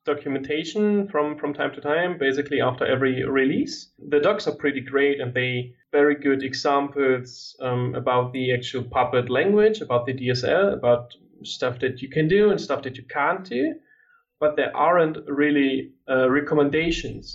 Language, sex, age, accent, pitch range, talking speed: English, male, 30-49, German, 125-150 Hz, 165 wpm